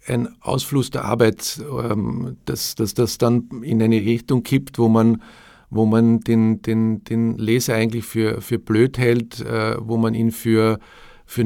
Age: 50-69